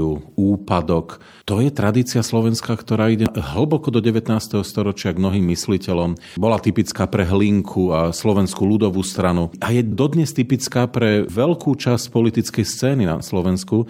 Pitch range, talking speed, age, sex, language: 95-120 Hz, 140 wpm, 40-59, male, Slovak